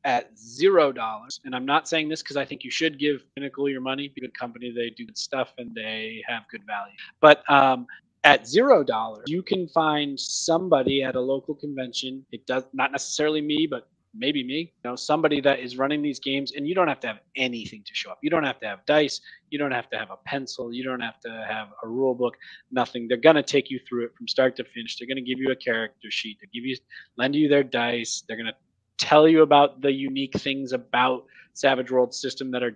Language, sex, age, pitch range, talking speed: English, male, 30-49, 125-145 Hz, 235 wpm